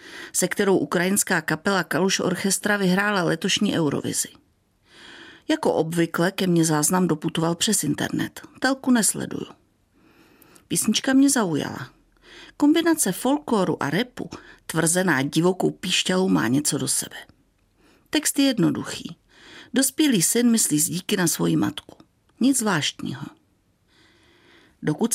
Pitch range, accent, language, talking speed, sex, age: 175-225 Hz, native, Czech, 110 wpm, female, 50-69